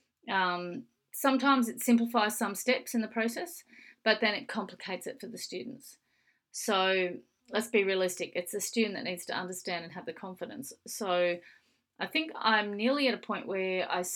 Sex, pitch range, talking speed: female, 185-240 Hz, 180 wpm